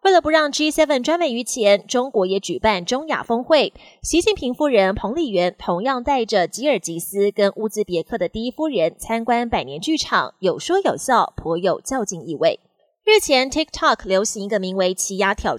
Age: 20-39